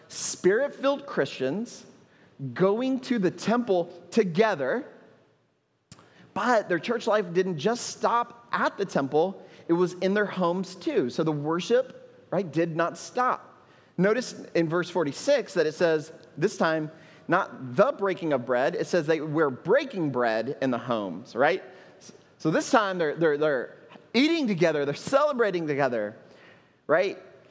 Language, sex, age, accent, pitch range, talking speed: English, male, 30-49, American, 135-215 Hz, 145 wpm